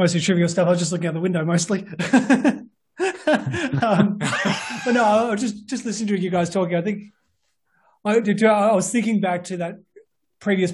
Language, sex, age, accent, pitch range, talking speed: English, male, 30-49, Australian, 160-200 Hz, 185 wpm